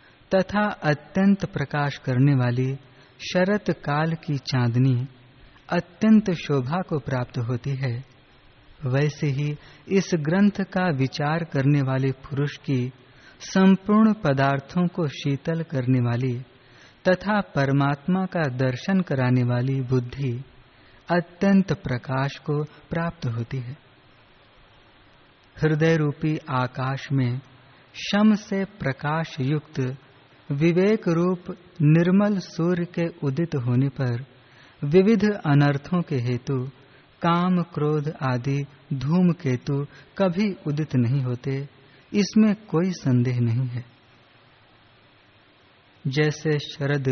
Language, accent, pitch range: Hindi, native, 130-170 Hz